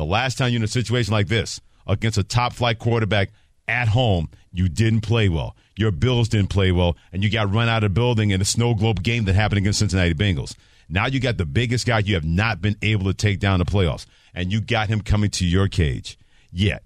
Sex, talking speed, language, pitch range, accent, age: male, 235 wpm, English, 95-115 Hz, American, 40-59